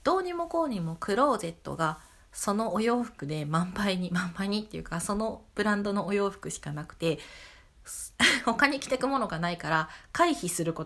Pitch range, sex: 165-230 Hz, female